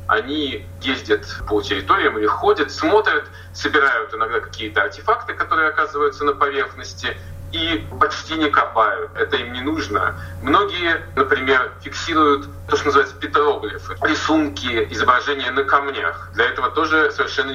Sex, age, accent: male, 20-39, native